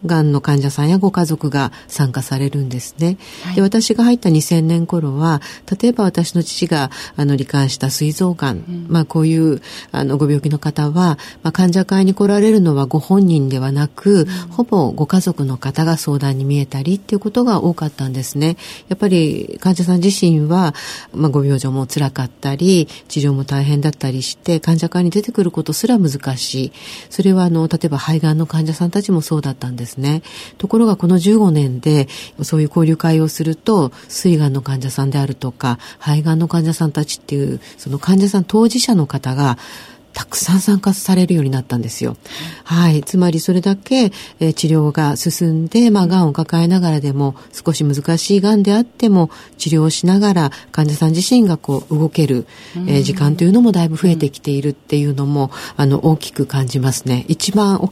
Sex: female